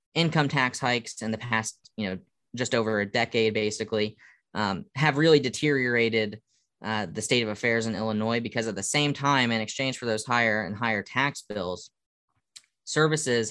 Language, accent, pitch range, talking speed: English, American, 105-120 Hz, 175 wpm